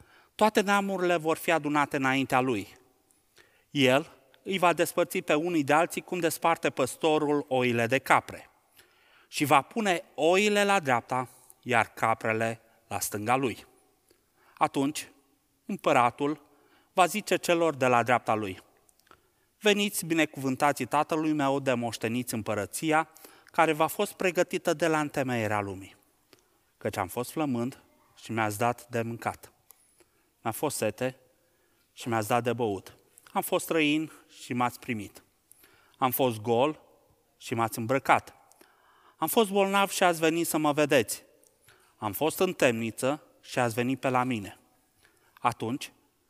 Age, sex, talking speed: 30-49, male, 135 wpm